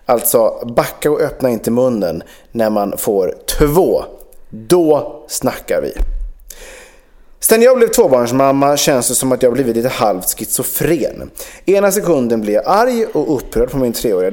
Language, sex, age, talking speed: English, male, 30-49, 140 wpm